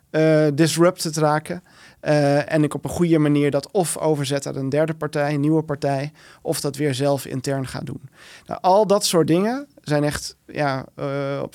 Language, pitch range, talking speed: Dutch, 145-165 Hz, 180 wpm